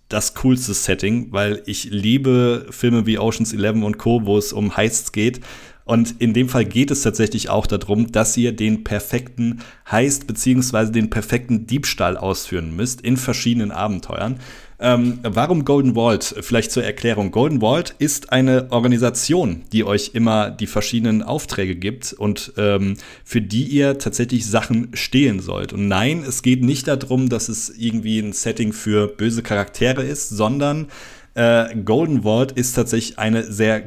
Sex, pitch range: male, 105-125 Hz